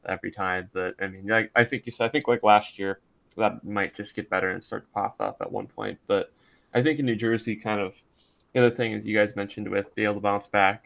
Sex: male